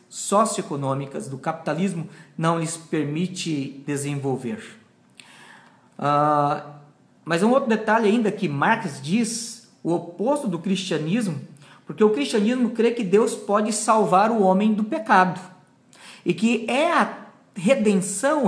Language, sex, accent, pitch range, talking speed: Portuguese, male, Brazilian, 170-230 Hz, 120 wpm